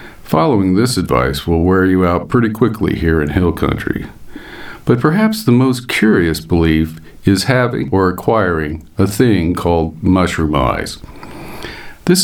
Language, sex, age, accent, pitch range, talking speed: English, male, 50-69, American, 80-120 Hz, 140 wpm